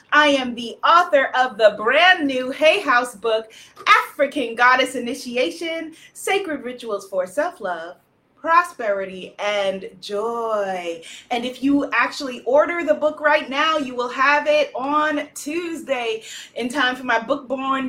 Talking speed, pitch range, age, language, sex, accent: 140 wpm, 245-305 Hz, 30-49, English, female, American